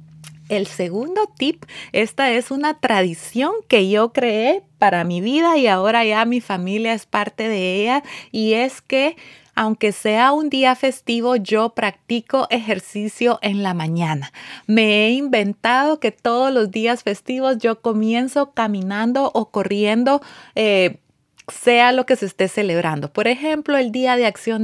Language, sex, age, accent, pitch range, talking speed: Spanish, female, 30-49, Venezuelan, 200-255 Hz, 150 wpm